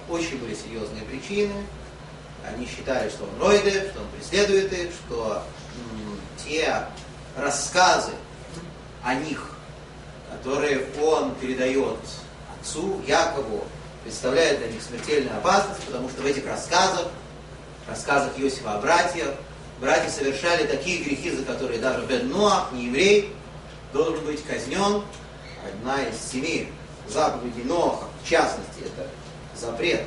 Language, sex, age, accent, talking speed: Russian, male, 30-49, native, 120 wpm